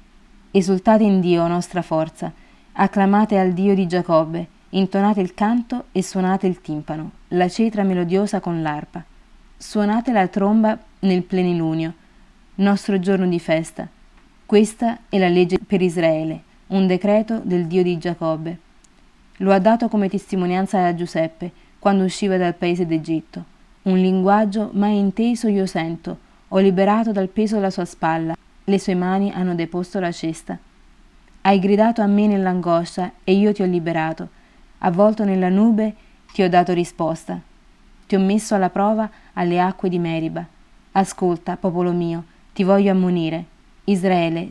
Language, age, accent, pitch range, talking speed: Italian, 30-49, native, 170-200 Hz, 145 wpm